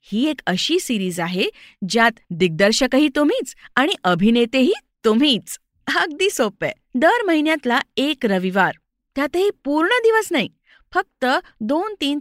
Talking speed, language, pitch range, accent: 120 wpm, Marathi, 205-295 Hz, native